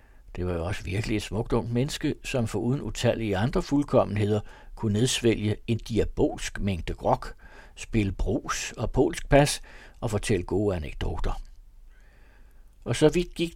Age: 60-79